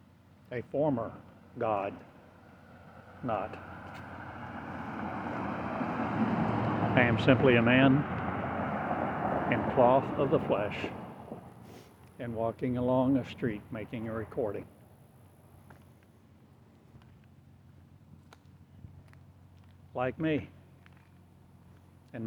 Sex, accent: male, American